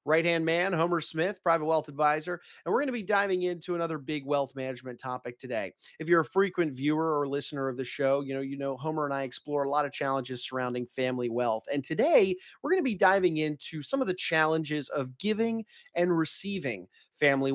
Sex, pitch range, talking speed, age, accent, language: male, 130-170 Hz, 210 wpm, 30-49, American, English